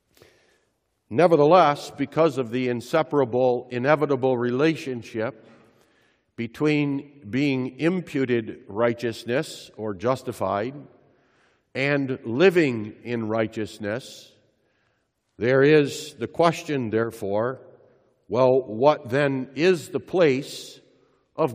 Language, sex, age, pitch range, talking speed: English, male, 60-79, 120-145 Hz, 80 wpm